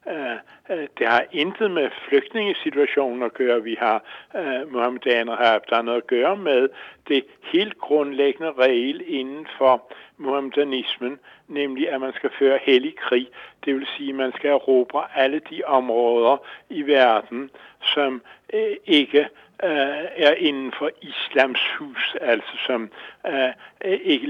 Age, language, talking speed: 60-79, English, 150 wpm